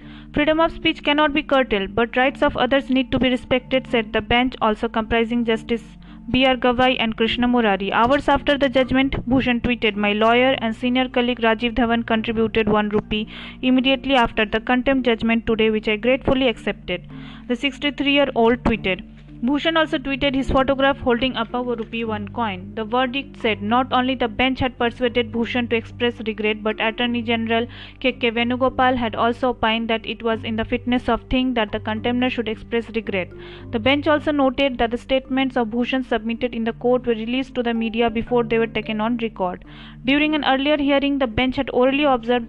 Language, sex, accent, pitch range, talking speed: Hindi, female, native, 225-260 Hz, 190 wpm